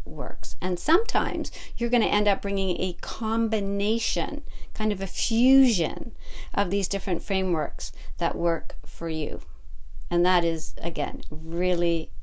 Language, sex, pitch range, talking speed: English, female, 165-220 Hz, 135 wpm